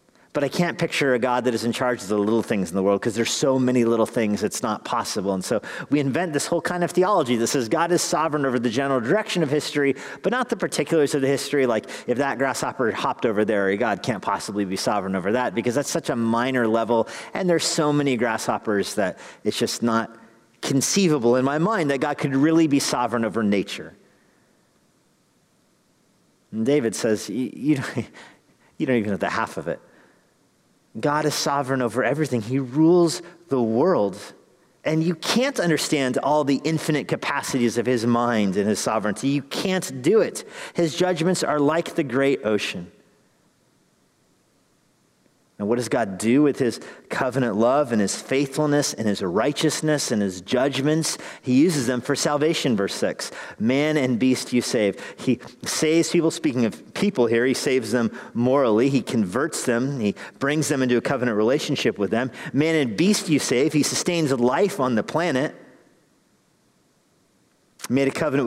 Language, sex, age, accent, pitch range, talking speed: English, male, 40-59, American, 120-155 Hz, 180 wpm